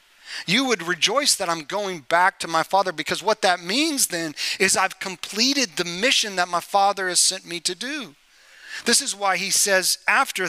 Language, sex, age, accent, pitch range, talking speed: English, male, 40-59, American, 155-195 Hz, 195 wpm